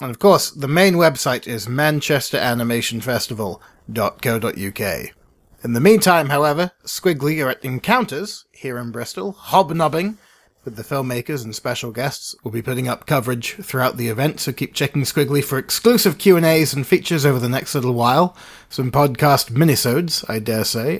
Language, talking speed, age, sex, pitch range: English, 155 wpm, 30-49, male, 120-155 Hz